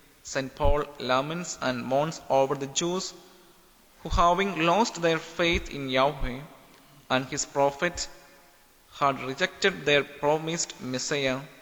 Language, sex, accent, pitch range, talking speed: English, male, Indian, 135-175 Hz, 120 wpm